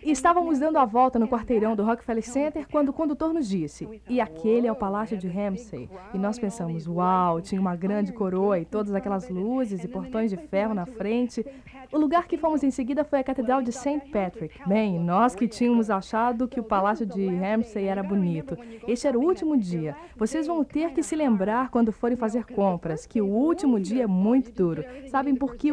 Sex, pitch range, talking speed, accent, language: female, 205-275 Hz, 210 wpm, Brazilian, Portuguese